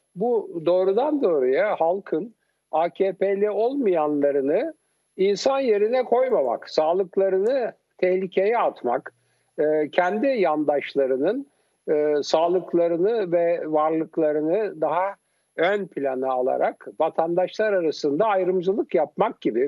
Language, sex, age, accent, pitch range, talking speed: Turkish, male, 60-79, native, 150-225 Hz, 80 wpm